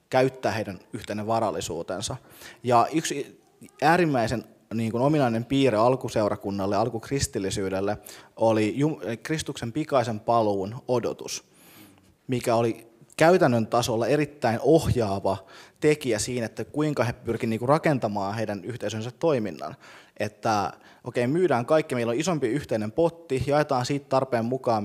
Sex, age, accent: male, 20-39, native